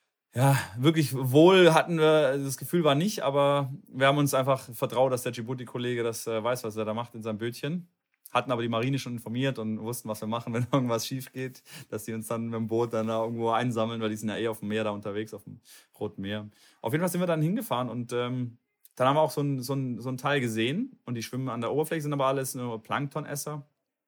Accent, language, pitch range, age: German, German, 115-140 Hz, 30-49